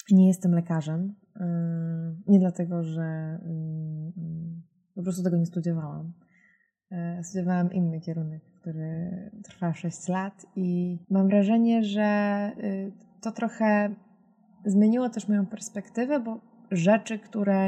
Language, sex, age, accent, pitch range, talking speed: Polish, female, 20-39, native, 175-210 Hz, 105 wpm